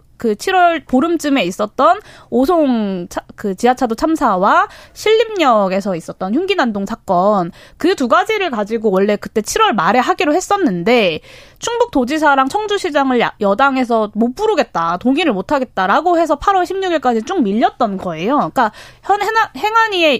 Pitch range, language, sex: 215-335 Hz, Korean, female